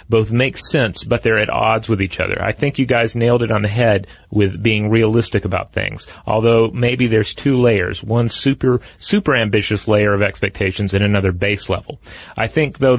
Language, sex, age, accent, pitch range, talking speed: English, male, 30-49, American, 100-120 Hz, 200 wpm